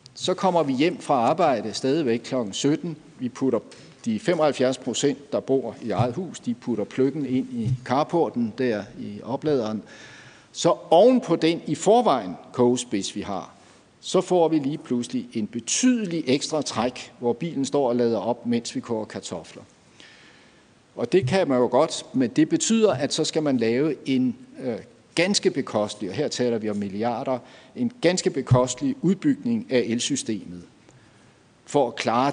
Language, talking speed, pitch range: Danish, 165 wpm, 115-180 Hz